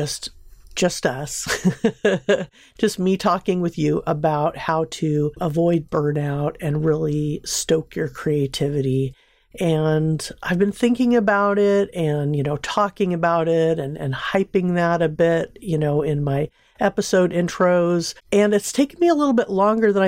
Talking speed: 150 wpm